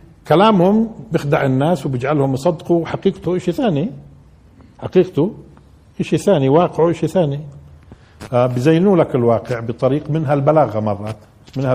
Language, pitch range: Arabic, 125-185 Hz